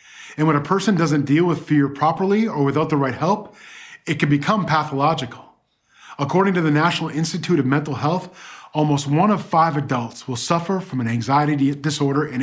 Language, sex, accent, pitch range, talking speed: English, male, American, 140-195 Hz, 185 wpm